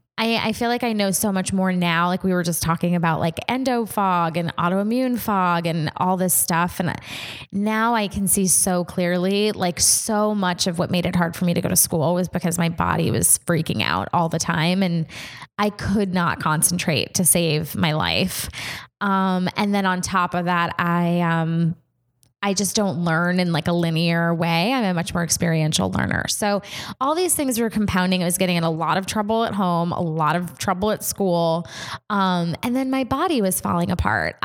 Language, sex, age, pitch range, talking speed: English, female, 20-39, 170-195 Hz, 210 wpm